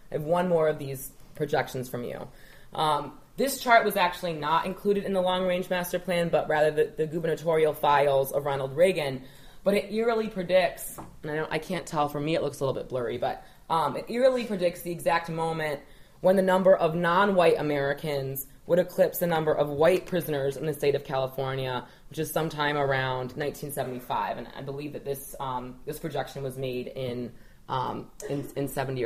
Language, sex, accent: English, female, American